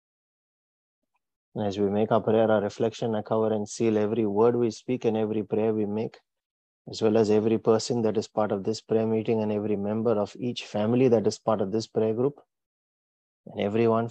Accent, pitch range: Indian, 105-115 Hz